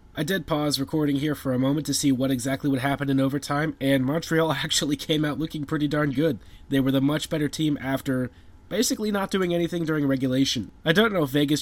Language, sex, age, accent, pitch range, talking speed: English, male, 20-39, American, 130-150 Hz, 220 wpm